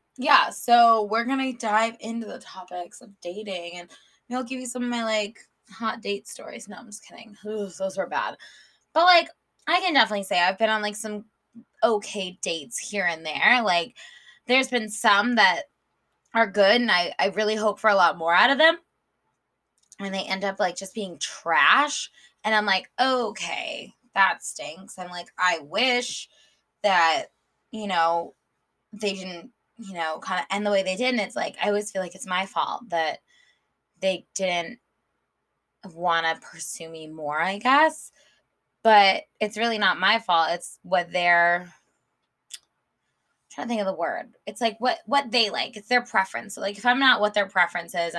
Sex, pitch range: female, 180-245 Hz